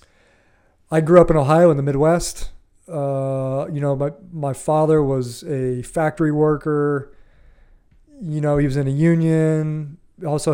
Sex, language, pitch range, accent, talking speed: male, English, 130-160 Hz, American, 150 wpm